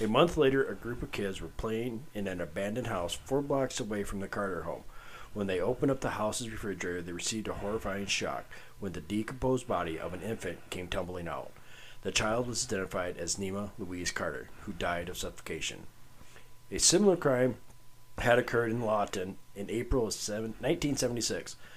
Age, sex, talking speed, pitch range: 40-59, male, 180 wpm, 95-125 Hz